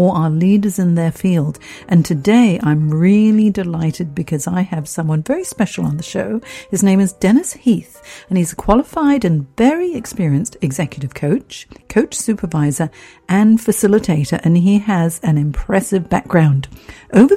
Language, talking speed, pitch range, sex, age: English, 150 wpm, 160-220 Hz, female, 50-69